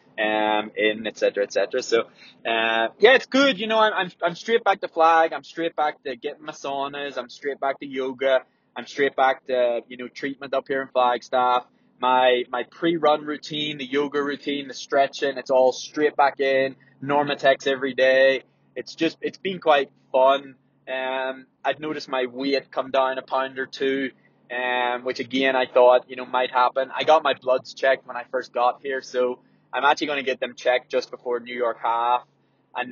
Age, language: 20-39, English